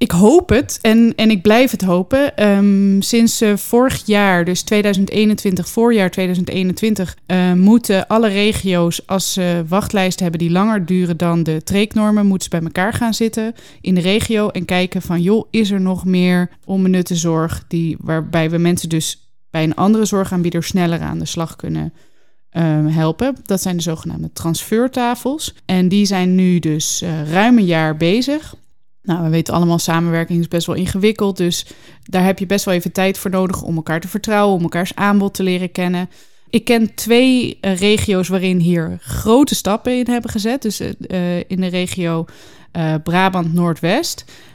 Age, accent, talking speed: 20-39, Dutch, 175 wpm